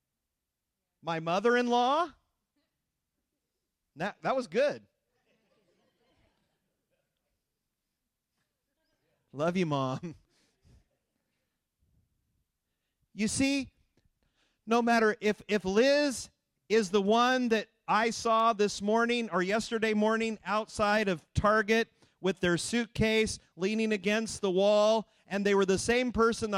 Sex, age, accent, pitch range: male, 40-59, American, 195-235 Hz